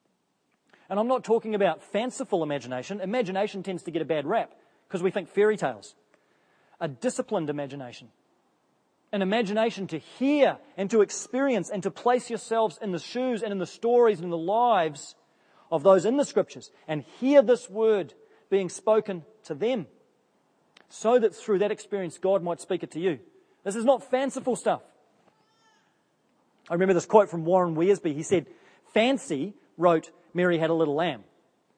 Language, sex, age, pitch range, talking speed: English, male, 30-49, 165-220 Hz, 170 wpm